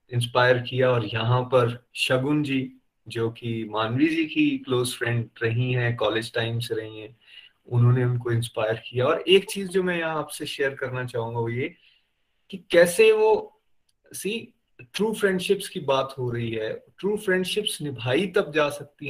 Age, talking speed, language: 30-49, 160 wpm, Hindi